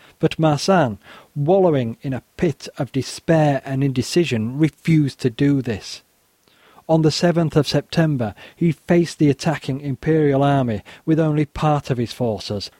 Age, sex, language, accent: 40-59, male, English, British